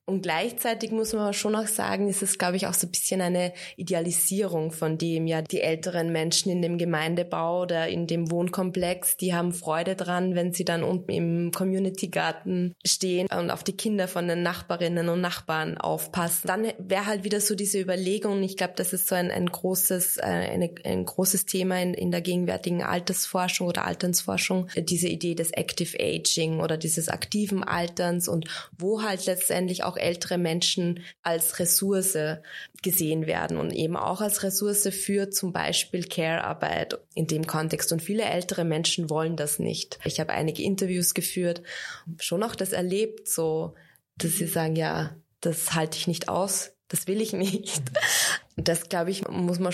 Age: 20-39